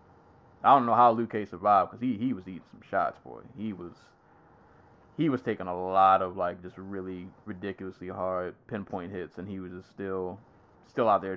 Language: English